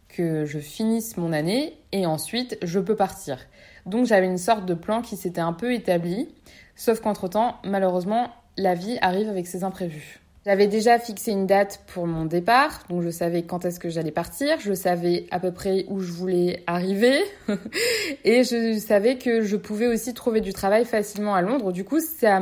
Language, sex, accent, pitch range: French, female, French, 185-245 Hz